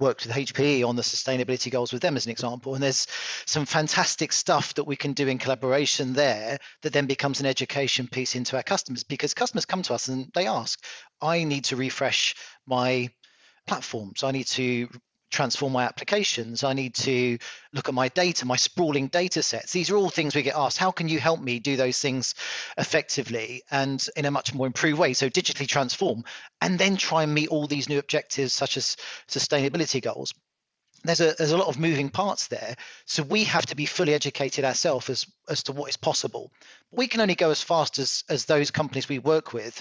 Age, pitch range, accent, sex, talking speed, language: 40-59, 130-155 Hz, British, male, 210 wpm, English